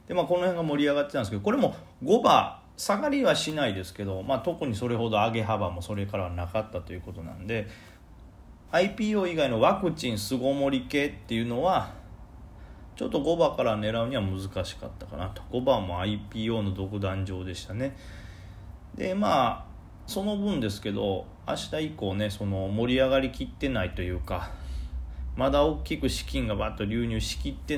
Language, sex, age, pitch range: Japanese, male, 30-49, 90-130 Hz